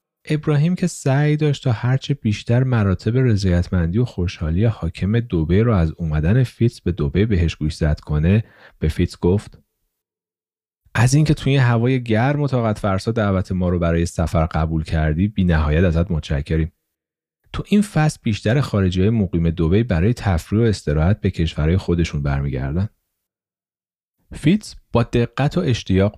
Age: 40-59